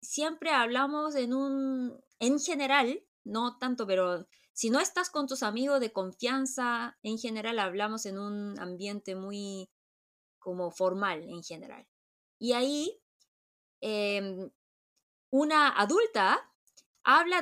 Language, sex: Spanish, female